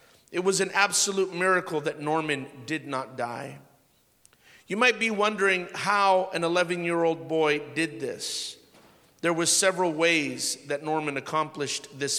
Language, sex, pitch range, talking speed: English, male, 160-190 Hz, 140 wpm